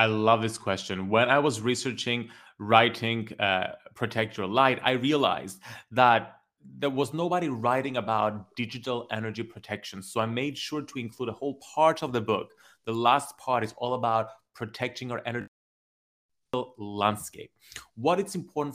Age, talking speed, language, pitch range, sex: 30-49, 155 wpm, English, 110-140 Hz, male